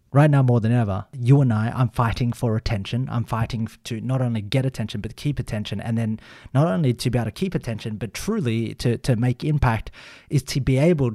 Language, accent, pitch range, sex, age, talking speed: English, Australian, 115-140 Hz, male, 30-49, 225 wpm